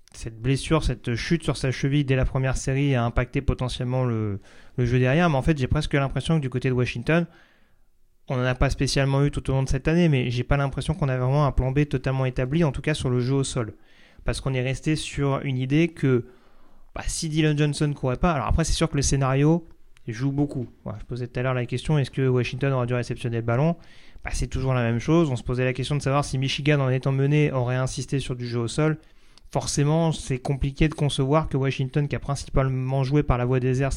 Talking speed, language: 250 wpm, French